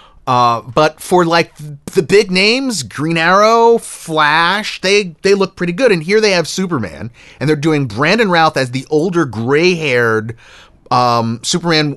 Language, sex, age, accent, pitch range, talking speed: English, male, 30-49, American, 115-160 Hz, 155 wpm